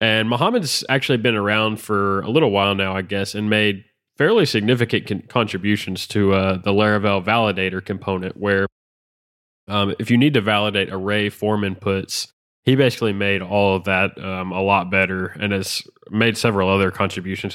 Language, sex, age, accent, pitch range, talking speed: English, male, 20-39, American, 95-110 Hz, 170 wpm